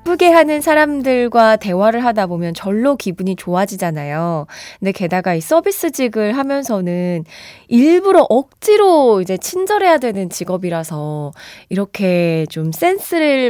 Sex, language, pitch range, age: female, Korean, 180-280 Hz, 20-39